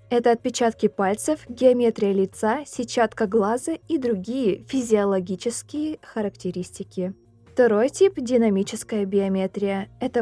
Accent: native